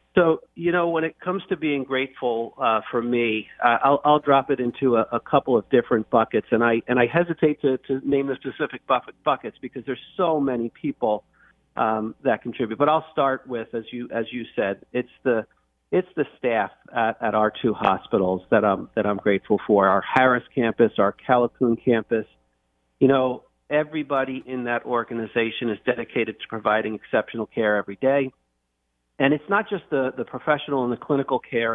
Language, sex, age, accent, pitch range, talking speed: English, male, 50-69, American, 115-135 Hz, 190 wpm